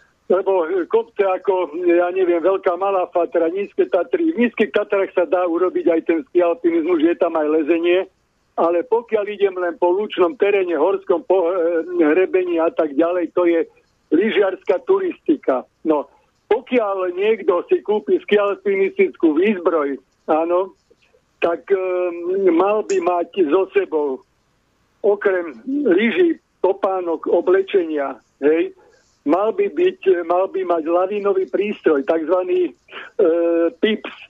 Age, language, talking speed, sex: 60-79, Slovak, 125 wpm, male